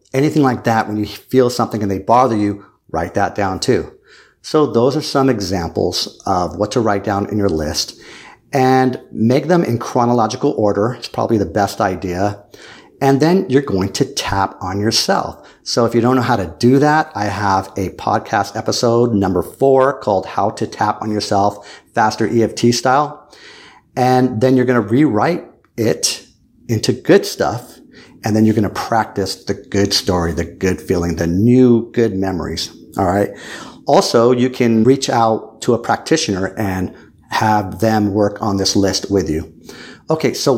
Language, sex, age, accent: English, male, 50-69, American